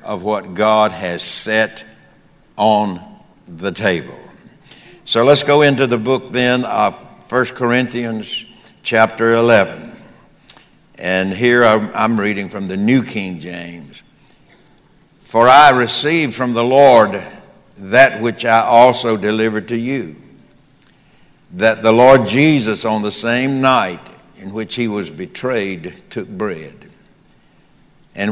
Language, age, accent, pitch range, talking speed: English, 60-79, American, 105-130 Hz, 125 wpm